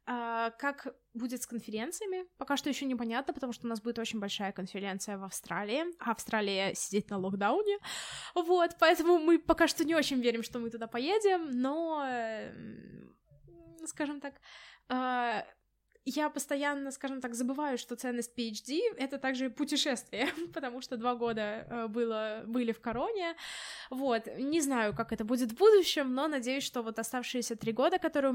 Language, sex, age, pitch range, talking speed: Russian, female, 20-39, 235-300 Hz, 155 wpm